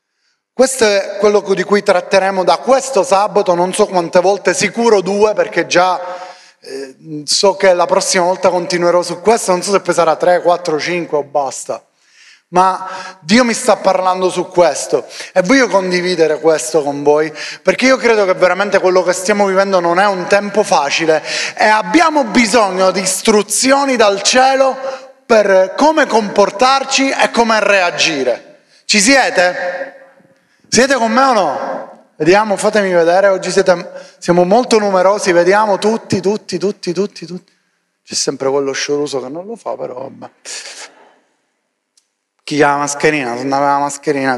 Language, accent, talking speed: Italian, native, 155 wpm